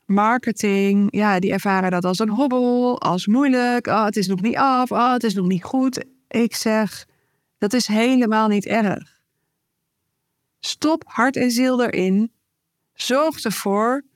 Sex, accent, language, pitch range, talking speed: female, Dutch, Dutch, 185-235 Hz, 155 wpm